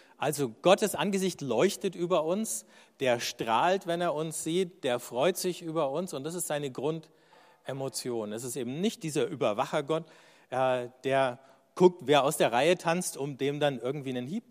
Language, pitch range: German, 130-175 Hz